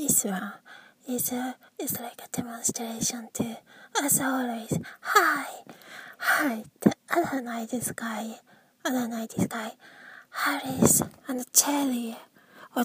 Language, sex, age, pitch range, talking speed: English, female, 20-39, 220-260 Hz, 115 wpm